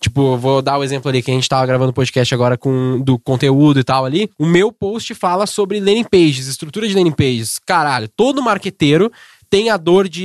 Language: Portuguese